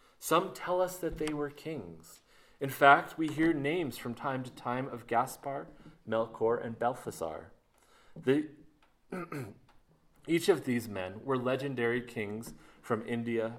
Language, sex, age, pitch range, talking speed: English, male, 30-49, 110-145 Hz, 135 wpm